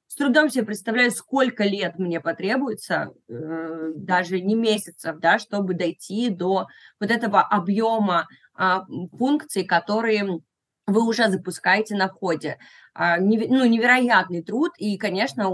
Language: Russian